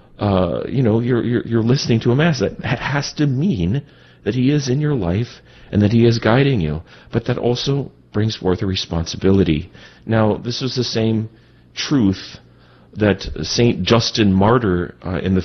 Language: English